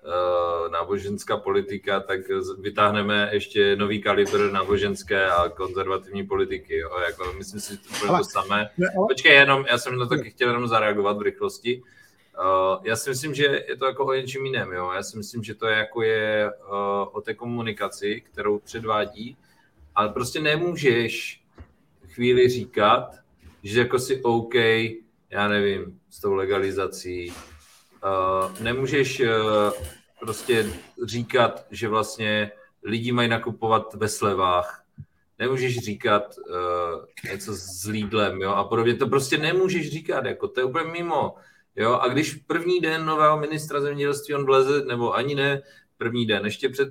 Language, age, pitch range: Czech, 30-49, 105-140 Hz